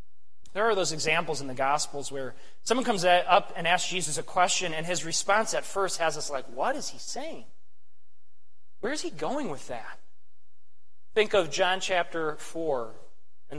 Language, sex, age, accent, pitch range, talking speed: English, male, 30-49, American, 130-200 Hz, 175 wpm